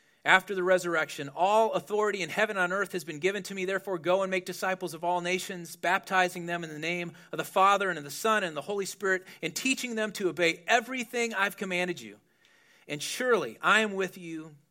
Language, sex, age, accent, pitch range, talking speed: English, male, 40-59, American, 160-195 Hz, 220 wpm